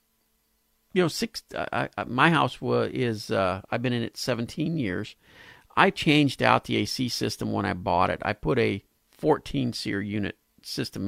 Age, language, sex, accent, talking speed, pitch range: 50-69, English, male, American, 170 wpm, 105-145 Hz